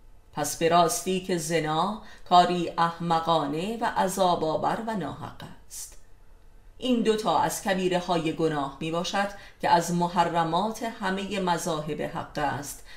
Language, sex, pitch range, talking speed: Persian, female, 150-195 Hz, 115 wpm